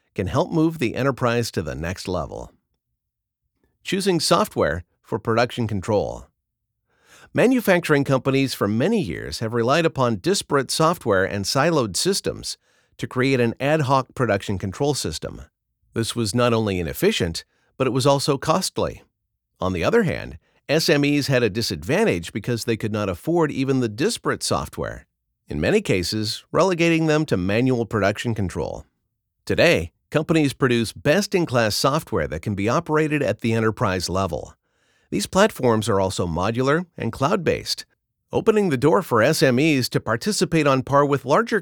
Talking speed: 145 wpm